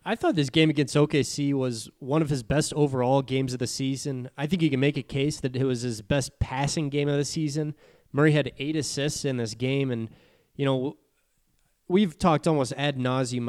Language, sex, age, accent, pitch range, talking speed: English, male, 20-39, American, 130-155 Hz, 215 wpm